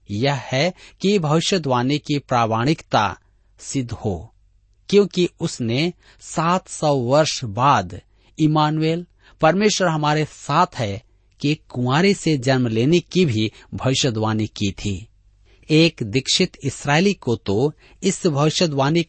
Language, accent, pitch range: Hindi, native, 110-165 Hz